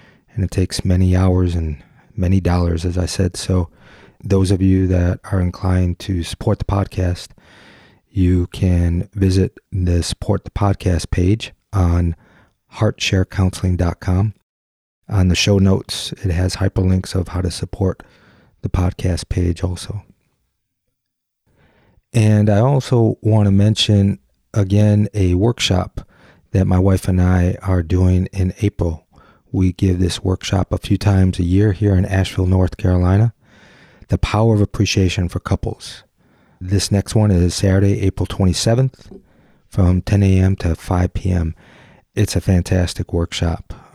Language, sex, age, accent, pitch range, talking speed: English, male, 30-49, American, 90-100 Hz, 140 wpm